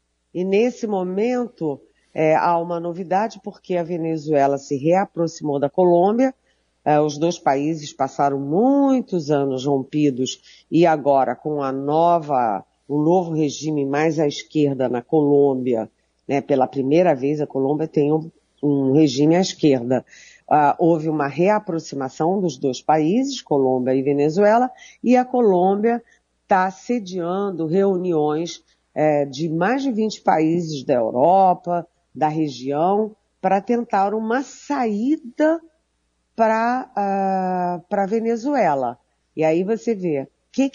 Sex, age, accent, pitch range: female, 50-69, Brazilian, 150-220 Hz